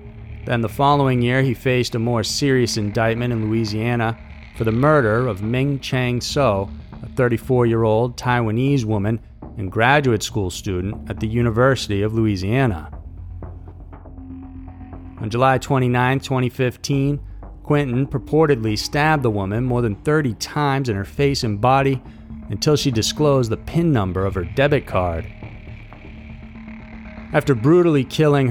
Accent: American